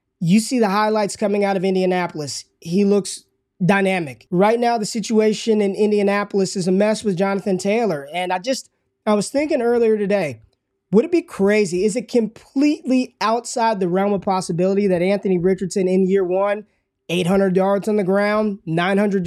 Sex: male